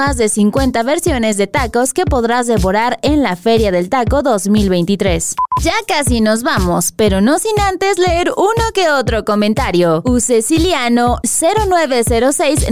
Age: 20-39